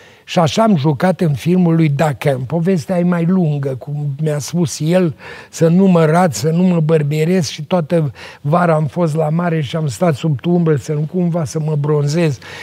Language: Romanian